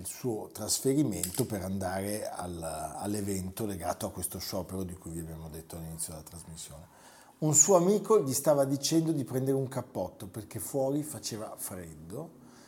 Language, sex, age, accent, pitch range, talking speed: Italian, male, 50-69, native, 95-135 Hz, 150 wpm